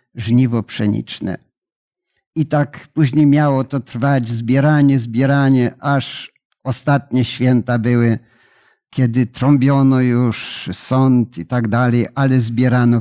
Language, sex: Polish, male